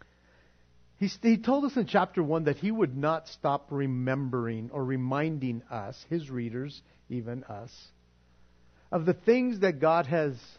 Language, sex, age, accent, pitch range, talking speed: English, male, 50-69, American, 135-215 Hz, 140 wpm